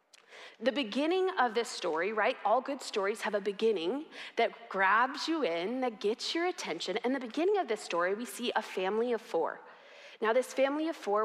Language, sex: English, female